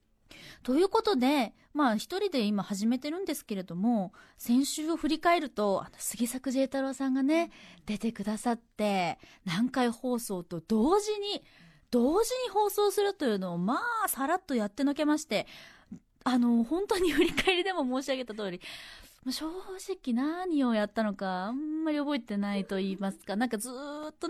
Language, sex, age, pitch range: Japanese, female, 20-39, 205-300 Hz